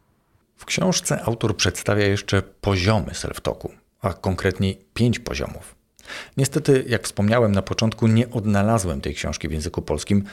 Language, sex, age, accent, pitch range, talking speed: Polish, male, 40-59, native, 85-120 Hz, 140 wpm